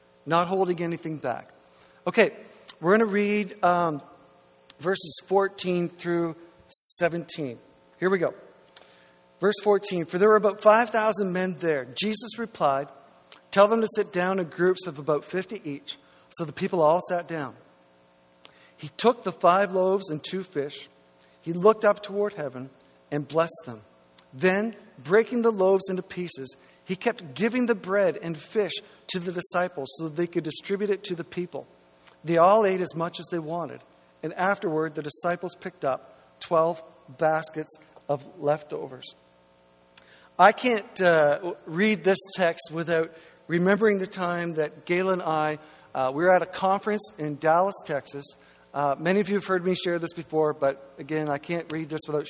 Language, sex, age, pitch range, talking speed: English, male, 50-69, 140-190 Hz, 165 wpm